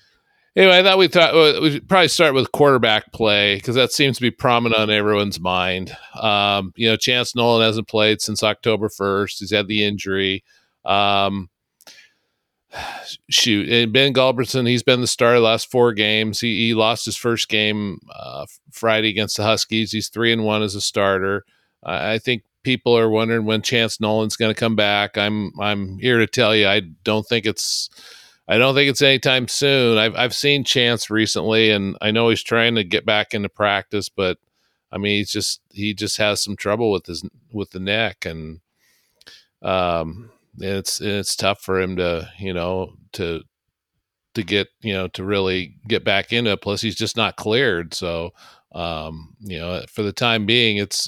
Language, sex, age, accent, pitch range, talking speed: English, male, 50-69, American, 100-115 Hz, 190 wpm